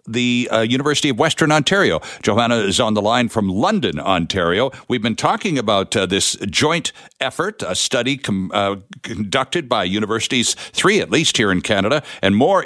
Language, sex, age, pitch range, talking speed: English, male, 60-79, 115-155 Hz, 175 wpm